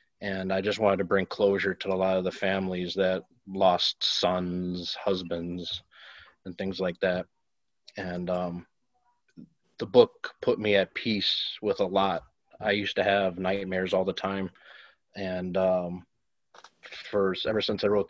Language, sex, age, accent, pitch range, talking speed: English, male, 20-39, American, 95-105 Hz, 155 wpm